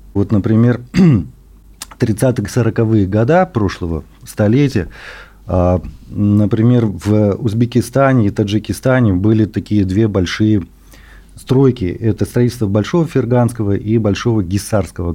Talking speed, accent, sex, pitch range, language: 90 wpm, native, male, 100-125 Hz, Russian